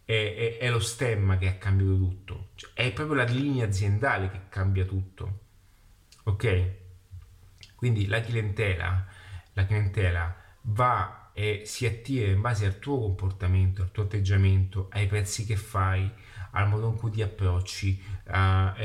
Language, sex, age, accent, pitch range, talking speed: Italian, male, 30-49, native, 95-110 Hz, 150 wpm